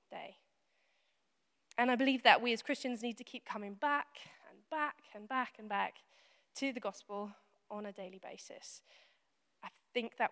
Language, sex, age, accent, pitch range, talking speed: English, female, 20-39, British, 205-240 Hz, 170 wpm